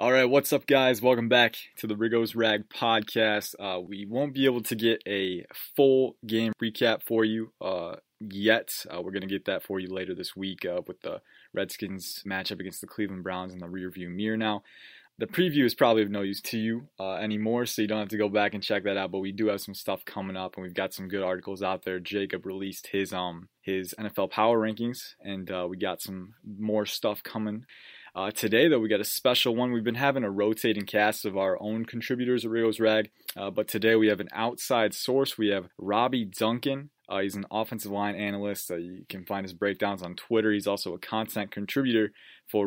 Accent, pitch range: American, 95-115 Hz